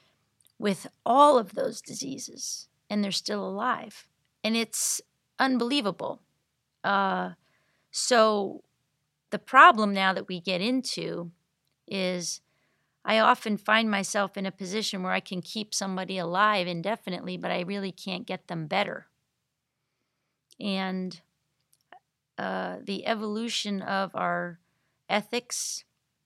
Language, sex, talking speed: English, female, 115 wpm